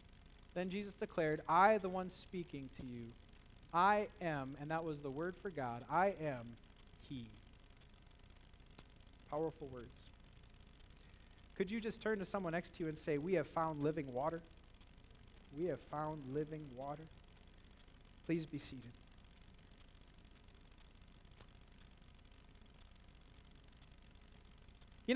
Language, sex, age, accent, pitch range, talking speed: English, male, 30-49, American, 140-220 Hz, 115 wpm